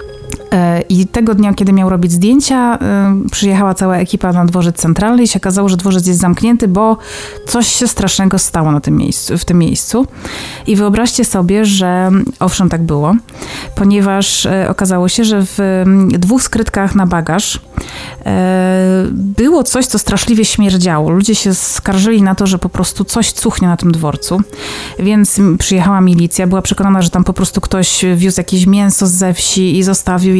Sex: female